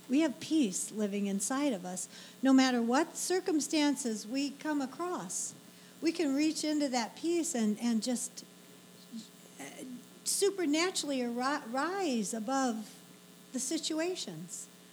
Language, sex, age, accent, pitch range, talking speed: English, female, 60-79, American, 210-300 Hz, 115 wpm